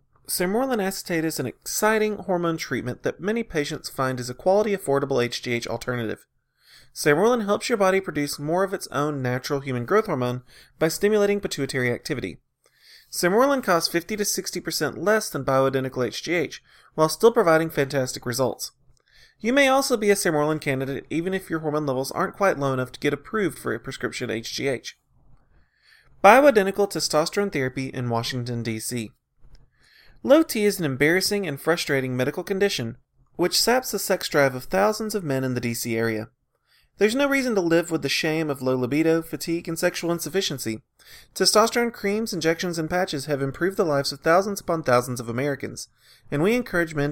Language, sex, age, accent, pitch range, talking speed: English, male, 30-49, American, 130-195 Hz, 165 wpm